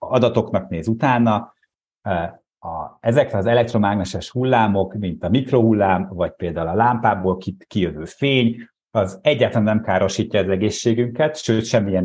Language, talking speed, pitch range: Hungarian, 120 wpm, 100-120 Hz